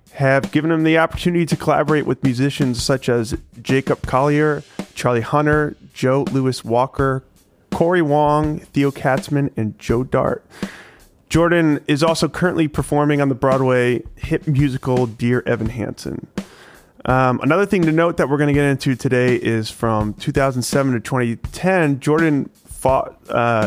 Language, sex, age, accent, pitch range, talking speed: English, male, 30-49, American, 115-150 Hz, 140 wpm